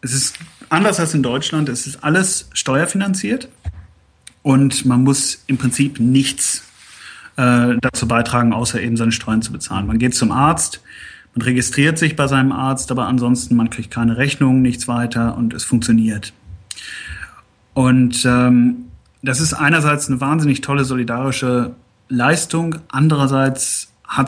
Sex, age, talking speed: male, 30-49, 145 wpm